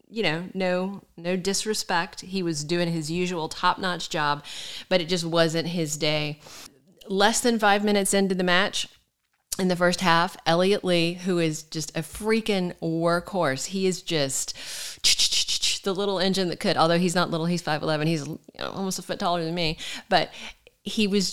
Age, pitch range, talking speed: 40-59, 160-195 Hz, 180 wpm